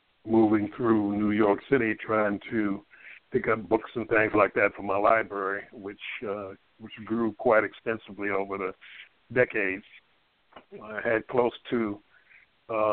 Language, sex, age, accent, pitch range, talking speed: English, male, 60-79, American, 95-110 Hz, 145 wpm